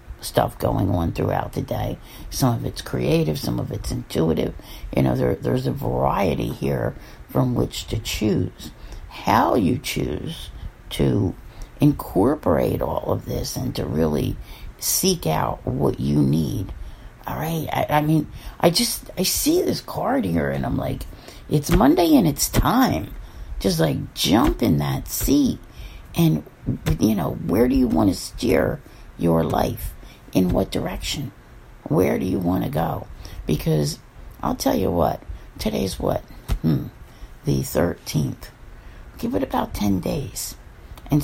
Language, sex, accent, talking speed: English, female, American, 150 wpm